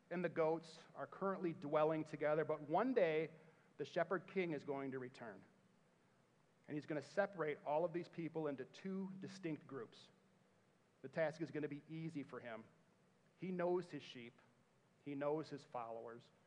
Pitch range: 145-175 Hz